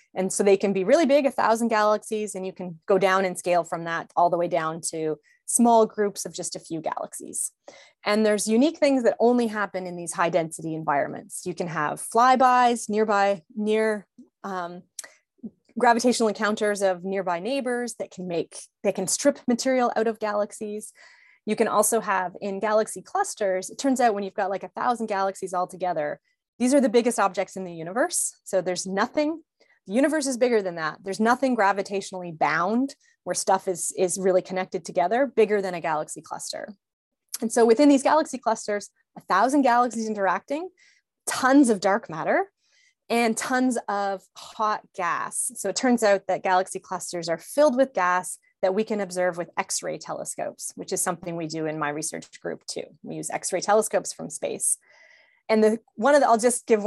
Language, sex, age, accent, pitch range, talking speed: English, female, 20-39, American, 185-240 Hz, 190 wpm